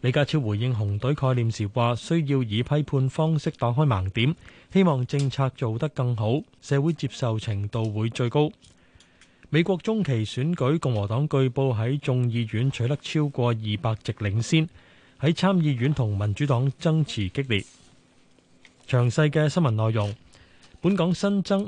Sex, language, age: male, Chinese, 20-39